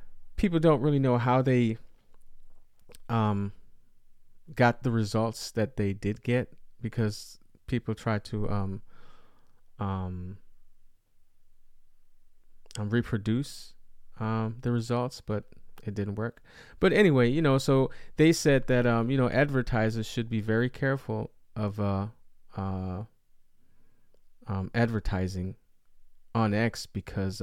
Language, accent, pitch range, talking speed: English, American, 95-120 Hz, 115 wpm